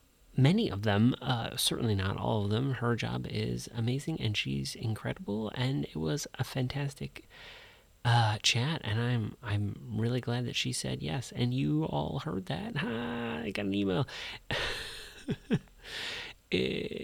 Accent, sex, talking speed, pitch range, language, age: American, male, 150 wpm, 105-135 Hz, English, 30-49